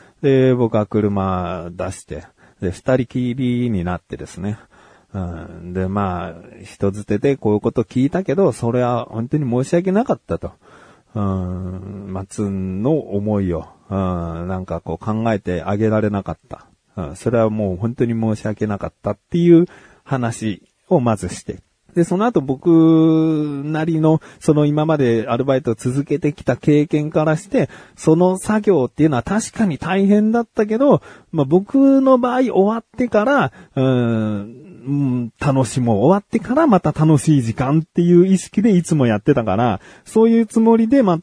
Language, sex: Japanese, male